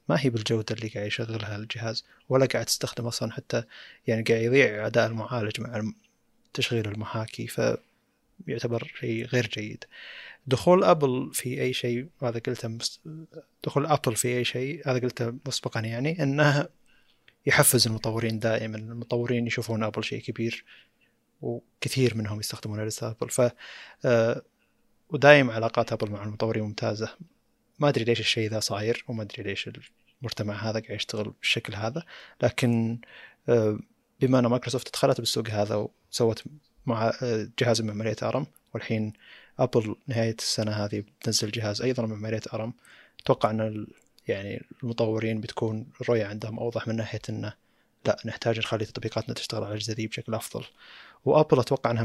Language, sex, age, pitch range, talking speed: Arabic, male, 20-39, 110-125 Hz, 140 wpm